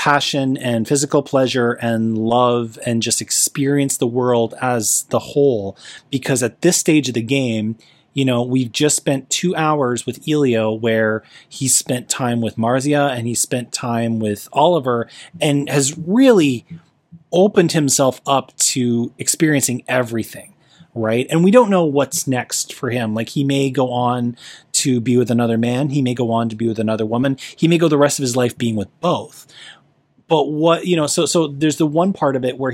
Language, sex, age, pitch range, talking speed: English, male, 30-49, 120-150 Hz, 190 wpm